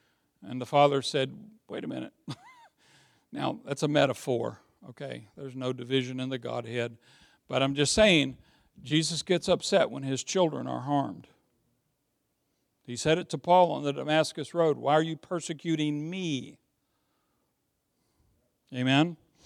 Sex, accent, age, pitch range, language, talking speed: male, American, 60-79, 140-185 Hz, English, 140 wpm